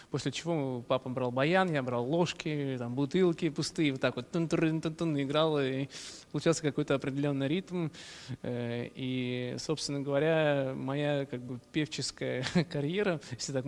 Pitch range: 125-155 Hz